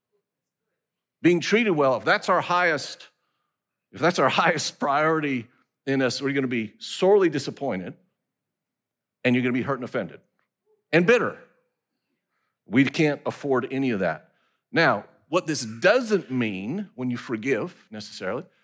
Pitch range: 115-170 Hz